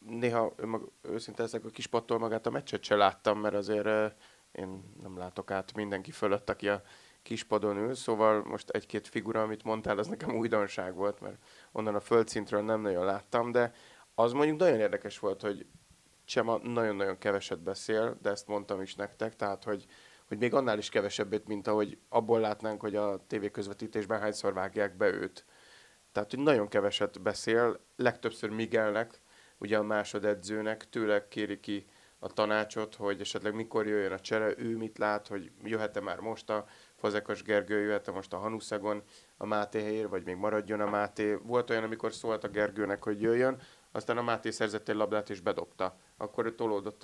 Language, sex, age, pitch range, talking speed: Hungarian, male, 30-49, 105-110 Hz, 175 wpm